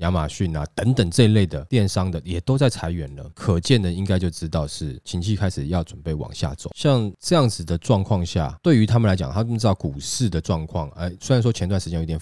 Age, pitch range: 20-39, 85-110 Hz